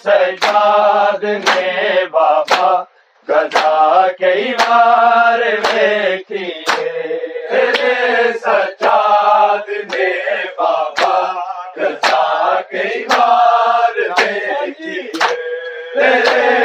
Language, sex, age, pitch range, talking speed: Urdu, male, 40-59, 205-250 Hz, 45 wpm